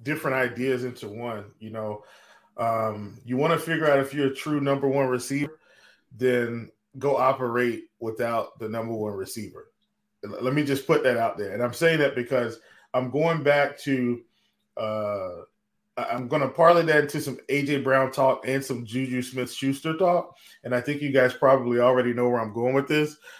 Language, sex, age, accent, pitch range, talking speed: English, male, 20-39, American, 125-155 Hz, 185 wpm